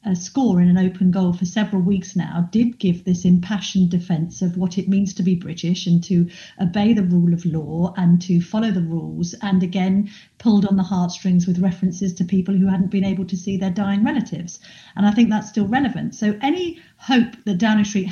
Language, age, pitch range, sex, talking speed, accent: English, 50-69, 185-230 Hz, female, 215 wpm, British